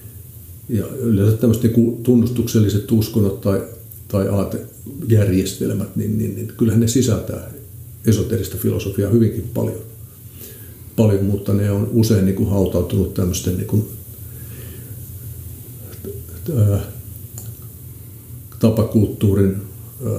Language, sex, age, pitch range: Finnish, male, 50-69, 100-115 Hz